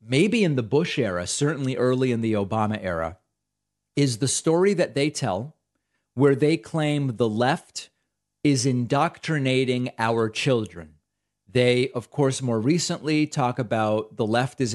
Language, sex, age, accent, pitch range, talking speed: English, male, 30-49, American, 115-150 Hz, 145 wpm